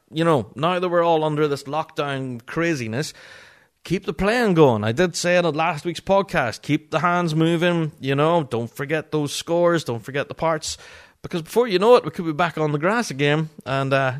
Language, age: English, 30-49